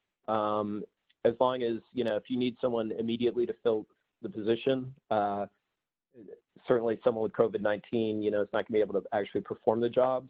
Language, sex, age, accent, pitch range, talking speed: English, male, 40-59, American, 105-120 Hz, 190 wpm